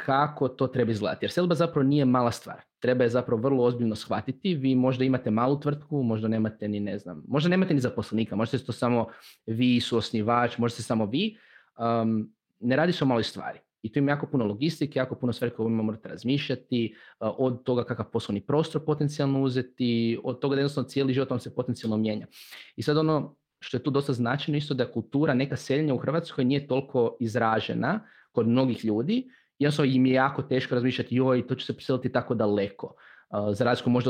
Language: Croatian